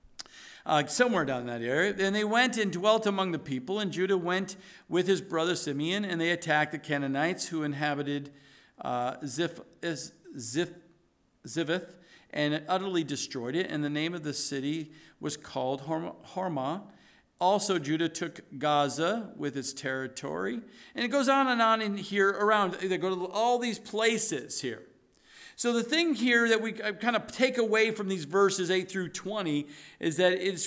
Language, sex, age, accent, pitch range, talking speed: English, male, 50-69, American, 165-215 Hz, 170 wpm